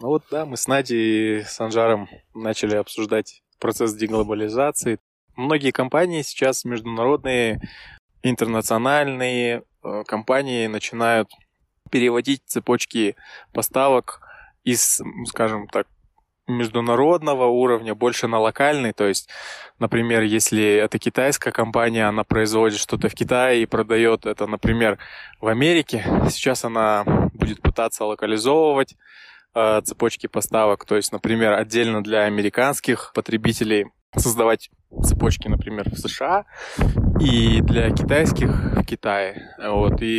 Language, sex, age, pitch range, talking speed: Russian, male, 20-39, 110-125 Hz, 110 wpm